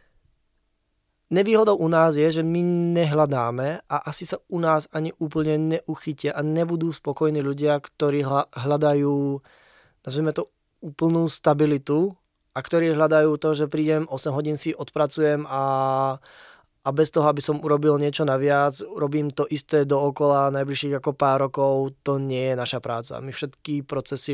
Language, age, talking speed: Czech, 20-39, 150 wpm